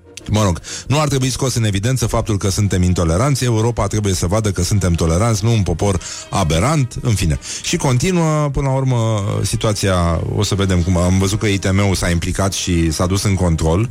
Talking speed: 200 wpm